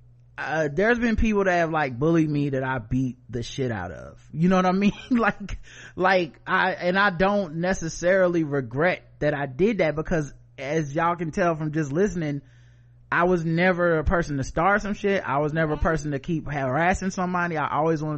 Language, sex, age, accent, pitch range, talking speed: English, male, 30-49, American, 125-165 Hz, 205 wpm